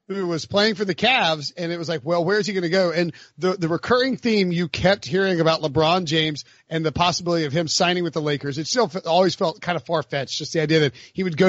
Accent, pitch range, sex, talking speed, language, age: American, 150-190 Hz, male, 275 wpm, English, 40-59